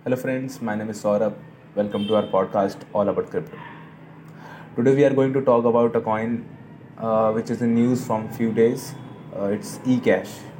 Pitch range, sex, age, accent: 115-140 Hz, male, 20-39, native